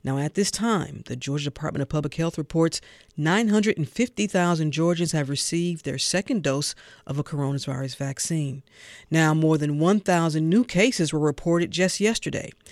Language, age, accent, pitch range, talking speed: English, 40-59, American, 150-190 Hz, 150 wpm